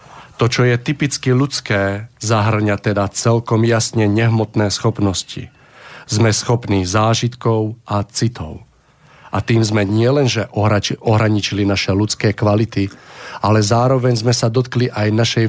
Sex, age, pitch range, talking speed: male, 40-59, 100-120 Hz, 120 wpm